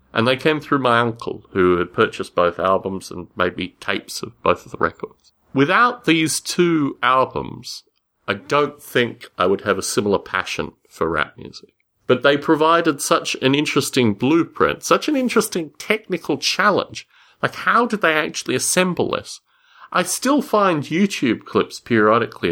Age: 40-59